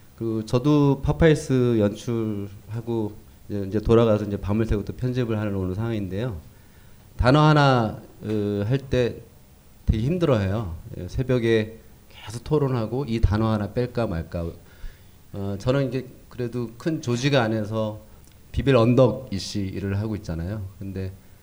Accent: native